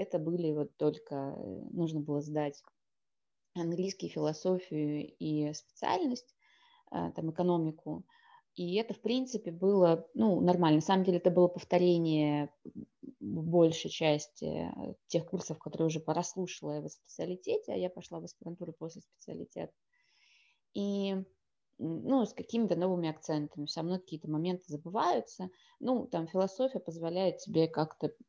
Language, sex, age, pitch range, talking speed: Russian, female, 20-39, 155-190 Hz, 125 wpm